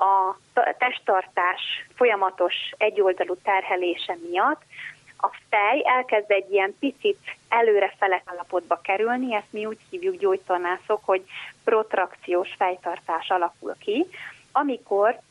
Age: 30-49